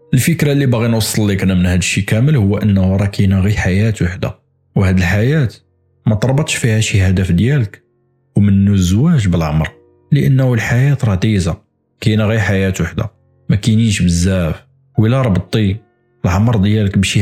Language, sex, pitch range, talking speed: Arabic, male, 100-130 Hz, 145 wpm